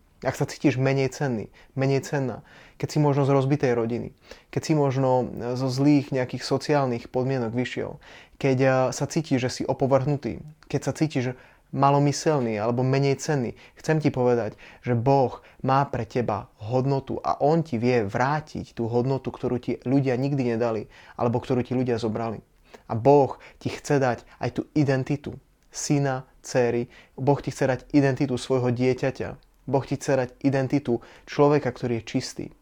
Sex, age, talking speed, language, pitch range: male, 20-39, 160 wpm, Slovak, 125-140 Hz